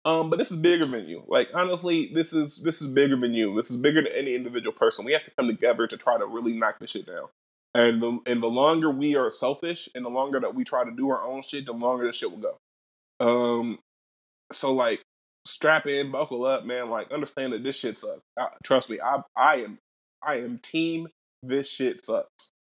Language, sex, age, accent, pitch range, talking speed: English, male, 20-39, American, 120-155 Hz, 230 wpm